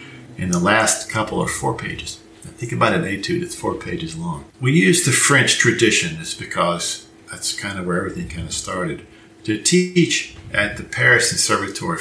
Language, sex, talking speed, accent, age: English, male, 185 wpm, American, 50-69